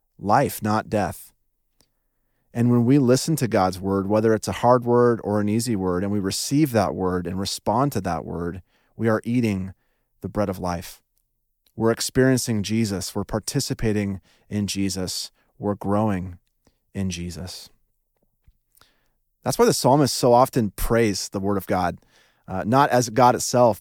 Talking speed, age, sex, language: 160 wpm, 30-49, male, English